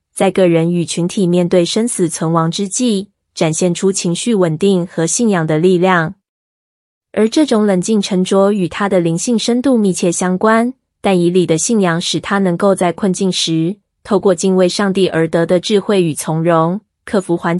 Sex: female